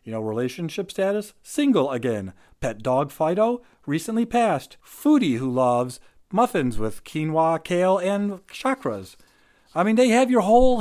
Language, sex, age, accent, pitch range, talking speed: English, male, 40-59, American, 125-205 Hz, 145 wpm